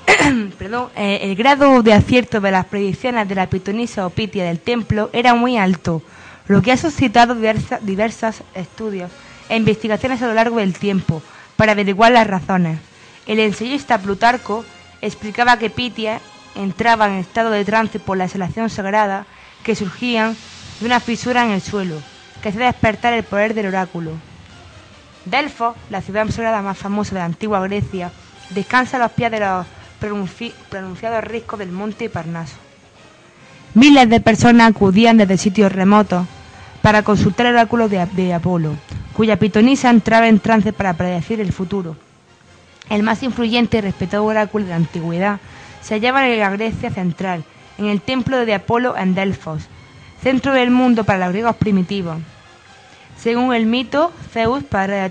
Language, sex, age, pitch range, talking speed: Spanish, female, 20-39, 190-230 Hz, 155 wpm